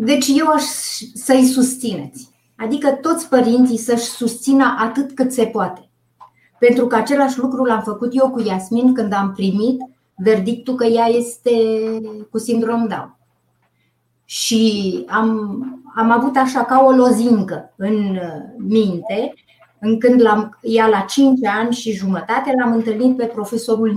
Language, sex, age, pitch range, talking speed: Romanian, female, 30-49, 210-255 Hz, 135 wpm